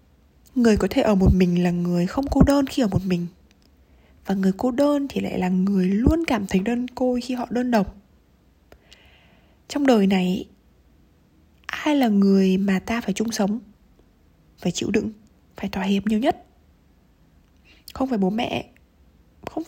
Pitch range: 175-245 Hz